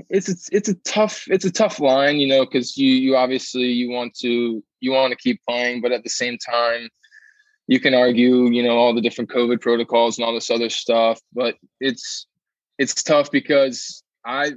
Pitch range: 120-130 Hz